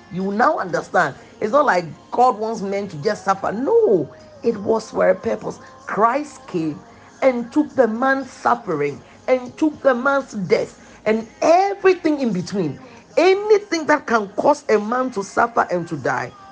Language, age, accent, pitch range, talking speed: English, 40-59, Nigerian, 175-245 Hz, 165 wpm